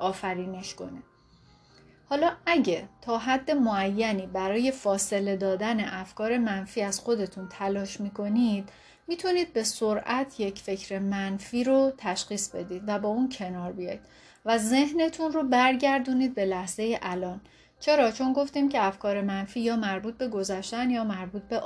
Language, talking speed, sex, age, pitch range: Persian, 140 wpm, female, 30-49, 195-260 Hz